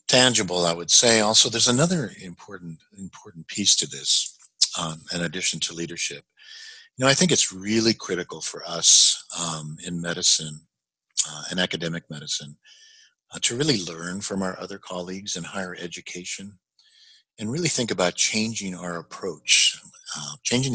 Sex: male